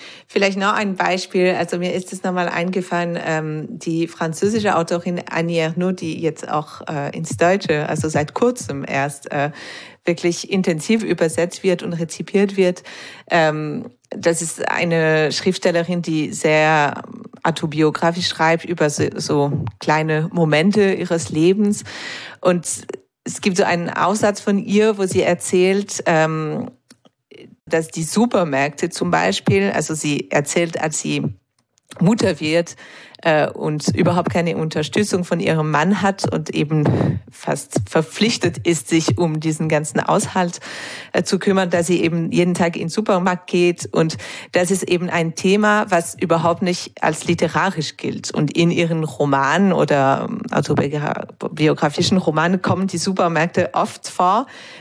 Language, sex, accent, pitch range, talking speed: German, female, German, 155-185 Hz, 140 wpm